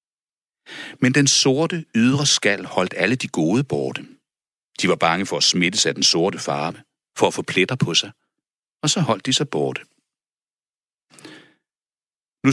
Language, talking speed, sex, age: Danish, 160 wpm, male, 60-79